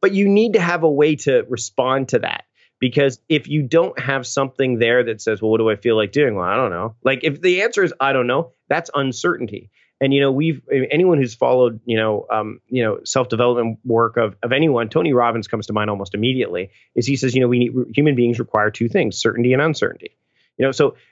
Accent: American